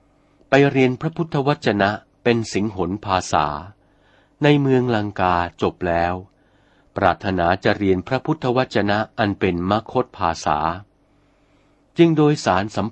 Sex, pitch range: male, 95-130 Hz